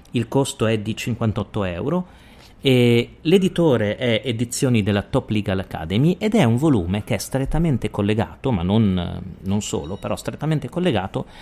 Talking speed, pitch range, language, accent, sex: 150 wpm, 100-135 Hz, Italian, native, male